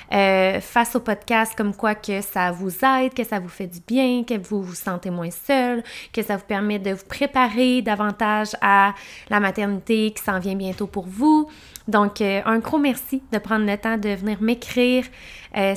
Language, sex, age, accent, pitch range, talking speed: French, female, 20-39, Canadian, 205-250 Hz, 200 wpm